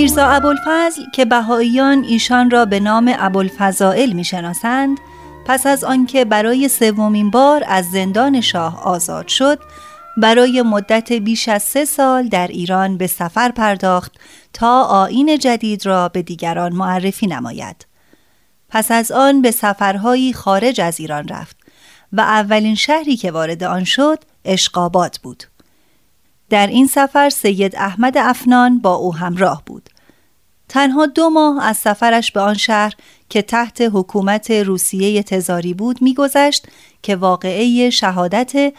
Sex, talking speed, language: female, 135 wpm, Persian